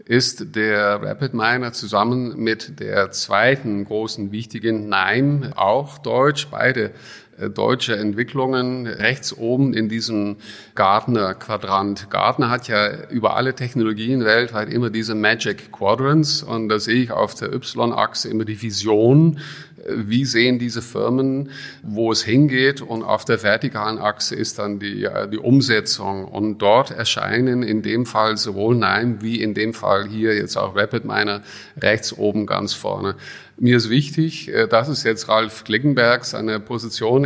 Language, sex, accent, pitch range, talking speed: English, male, German, 110-125 Hz, 145 wpm